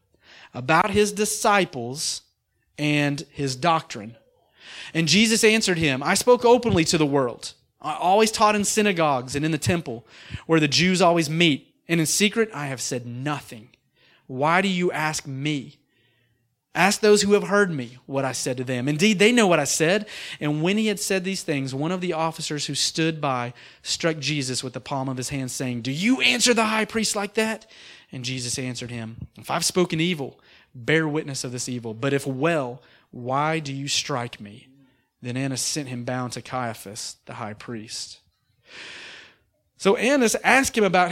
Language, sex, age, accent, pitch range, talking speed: English, male, 30-49, American, 125-180 Hz, 185 wpm